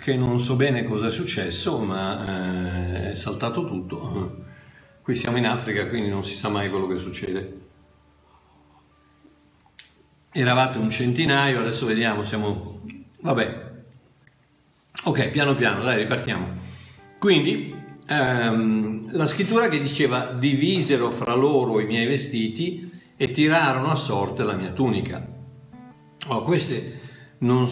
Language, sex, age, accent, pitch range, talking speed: Italian, male, 50-69, native, 110-140 Hz, 125 wpm